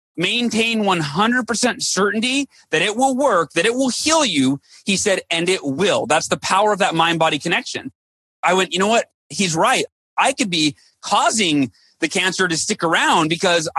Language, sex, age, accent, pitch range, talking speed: English, male, 30-49, American, 180-235 Hz, 180 wpm